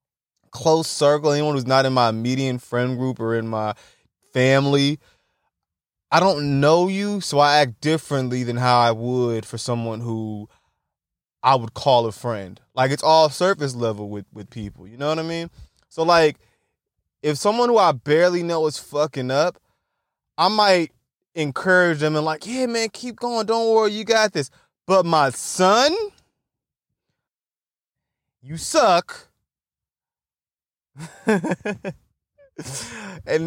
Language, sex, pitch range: English, male, 130-190 Hz